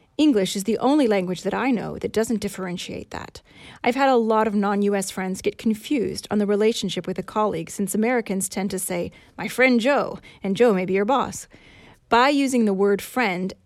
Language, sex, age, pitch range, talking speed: English, female, 30-49, 190-225 Hz, 200 wpm